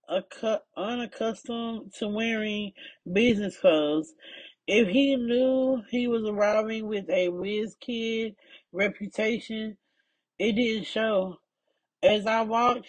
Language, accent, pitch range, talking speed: English, American, 200-245 Hz, 105 wpm